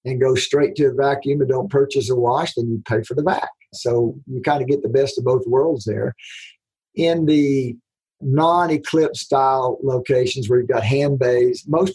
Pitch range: 125-150 Hz